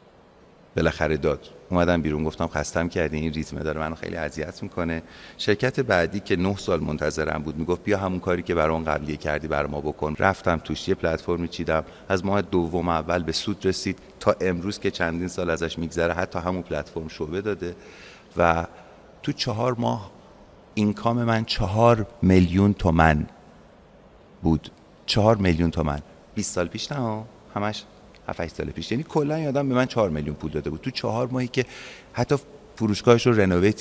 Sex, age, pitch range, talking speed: male, 30-49, 80-105 Hz, 170 wpm